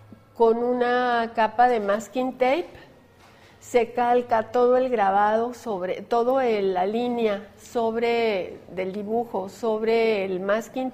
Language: English